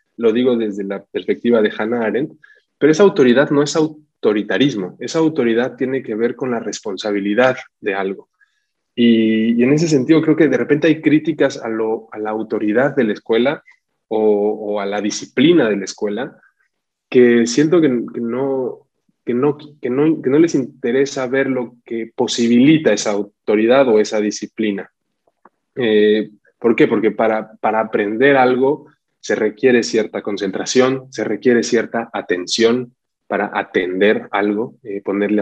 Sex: male